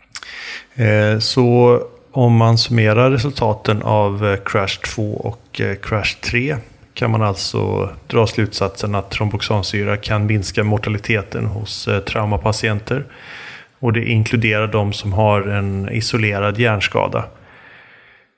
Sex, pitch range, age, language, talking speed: male, 105-120 Hz, 30-49, Swedish, 100 wpm